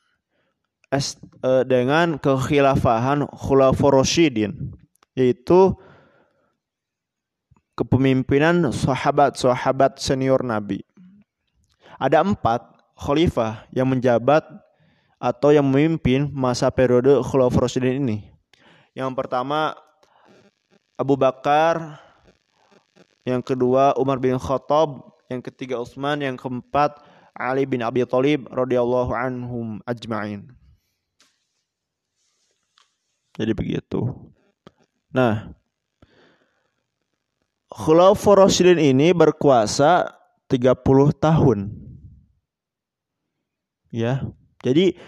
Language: Indonesian